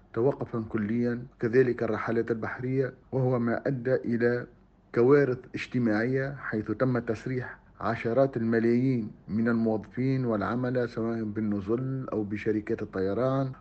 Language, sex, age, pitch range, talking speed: Arabic, male, 50-69, 115-135 Hz, 105 wpm